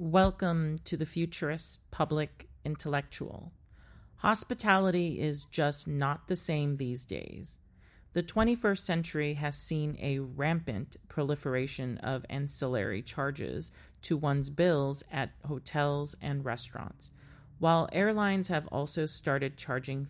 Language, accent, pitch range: English, American, 130-165 Hz